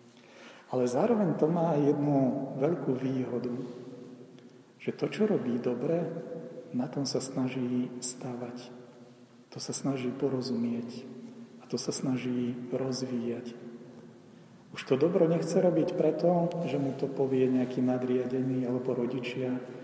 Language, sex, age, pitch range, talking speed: Slovak, male, 40-59, 125-155 Hz, 120 wpm